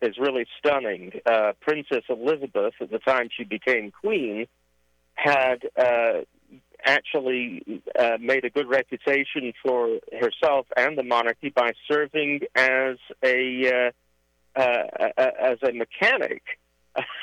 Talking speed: 120 wpm